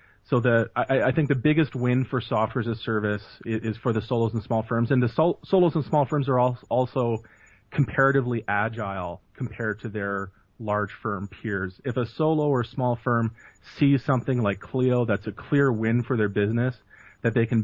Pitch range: 105-125 Hz